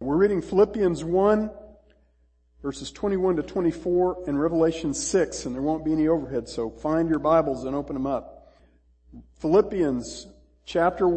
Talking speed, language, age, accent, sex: 145 wpm, English, 50-69, American, male